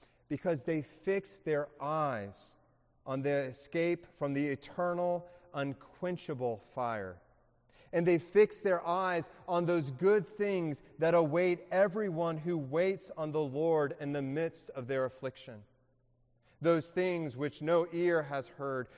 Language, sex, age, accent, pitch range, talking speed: English, male, 30-49, American, 120-165 Hz, 135 wpm